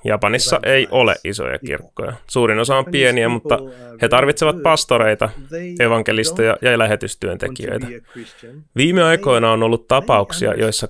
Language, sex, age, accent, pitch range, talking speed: Finnish, male, 20-39, native, 110-145 Hz, 120 wpm